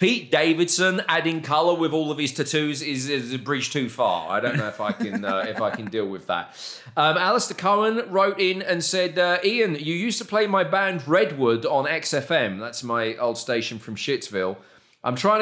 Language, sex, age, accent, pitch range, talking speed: English, male, 30-49, British, 120-155 Hz, 200 wpm